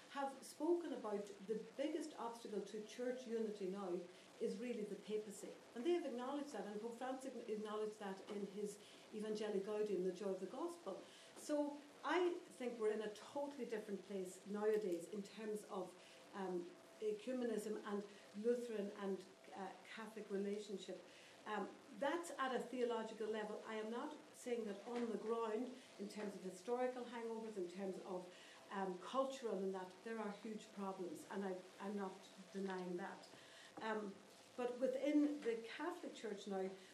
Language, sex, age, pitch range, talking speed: English, female, 60-79, 195-245 Hz, 155 wpm